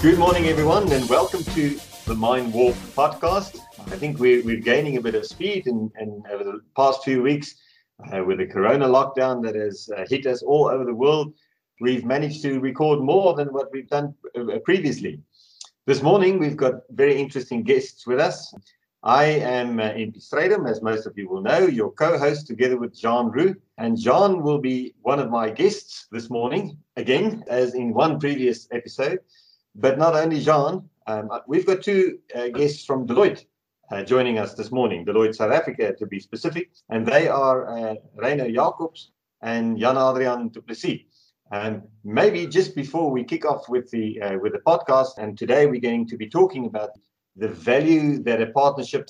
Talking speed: 185 wpm